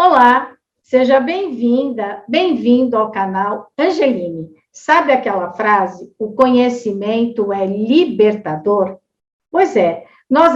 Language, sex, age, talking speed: Portuguese, female, 50-69, 95 wpm